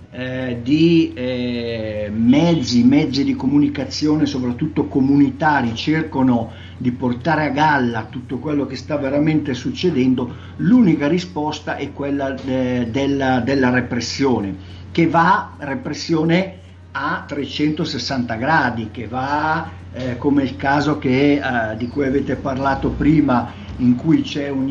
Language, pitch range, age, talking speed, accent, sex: Italian, 125-155 Hz, 50-69, 120 wpm, native, male